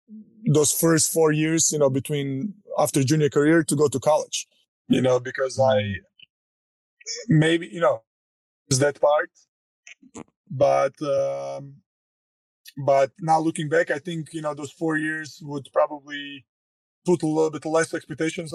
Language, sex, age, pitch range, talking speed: English, male, 20-39, 140-165 Hz, 145 wpm